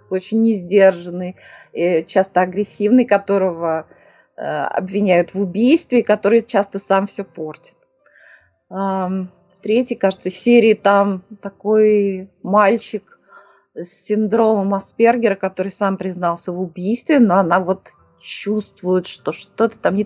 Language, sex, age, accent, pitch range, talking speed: Russian, female, 20-39, native, 185-240 Hz, 105 wpm